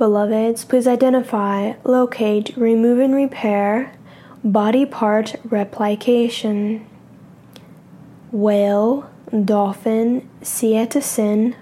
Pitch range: 210-245 Hz